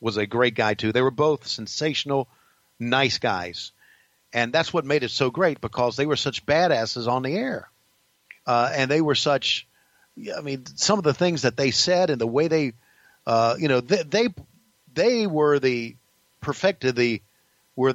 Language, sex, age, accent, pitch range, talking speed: English, male, 50-69, American, 110-135 Hz, 185 wpm